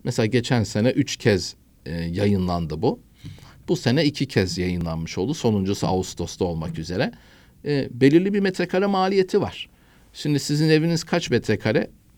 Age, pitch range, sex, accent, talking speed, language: 50-69, 105-150 Hz, male, native, 145 wpm, Turkish